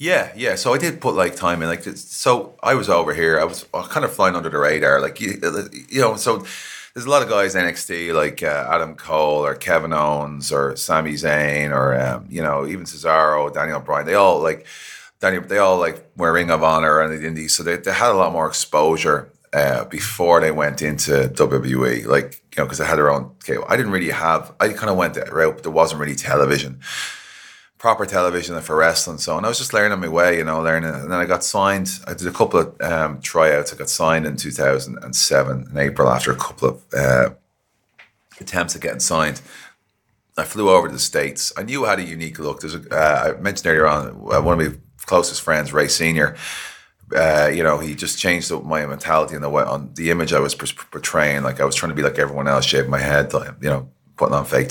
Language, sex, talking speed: English, male, 230 wpm